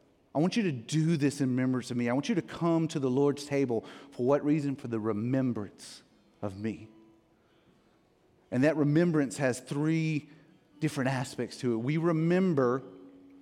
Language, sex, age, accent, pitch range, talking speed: English, male, 30-49, American, 125-170 Hz, 170 wpm